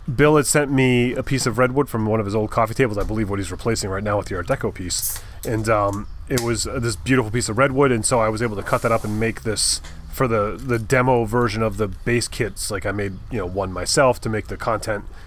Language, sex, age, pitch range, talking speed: English, male, 30-49, 100-125 Hz, 270 wpm